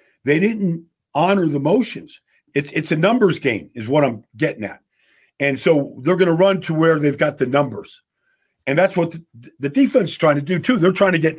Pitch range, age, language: 115-160 Hz, 50-69, English